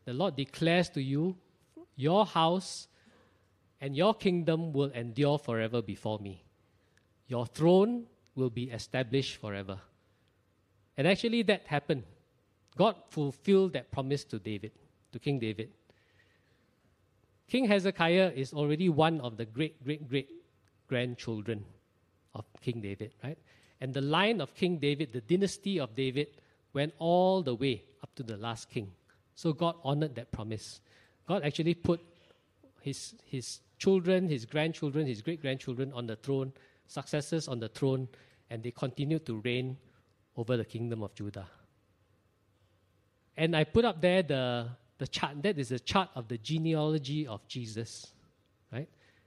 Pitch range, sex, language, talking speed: 110-160 Hz, male, English, 145 wpm